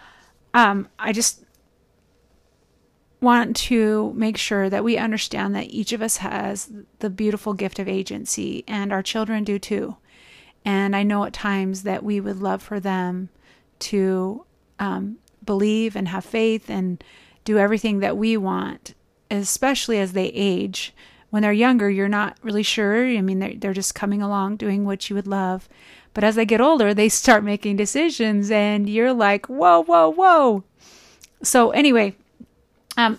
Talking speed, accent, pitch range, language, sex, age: 160 wpm, American, 195-225 Hz, English, female, 30-49